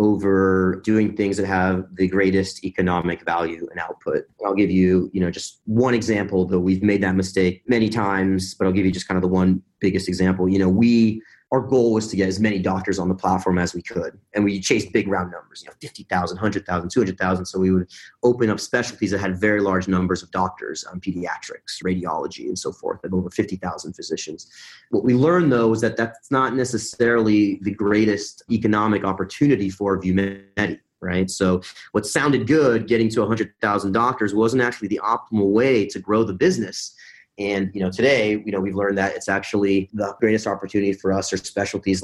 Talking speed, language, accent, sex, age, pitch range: 200 wpm, English, American, male, 30-49, 95-110 Hz